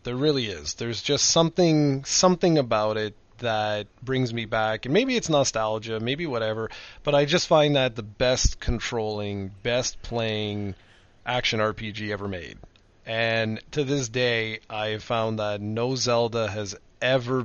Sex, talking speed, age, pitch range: male, 155 wpm, 30-49, 105-130 Hz